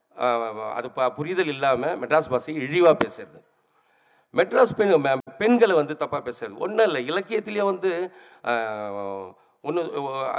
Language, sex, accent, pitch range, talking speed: Tamil, male, native, 125-180 Hz, 110 wpm